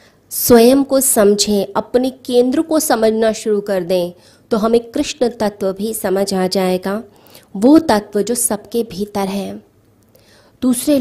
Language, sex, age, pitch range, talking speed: Hindi, female, 20-39, 195-230 Hz, 135 wpm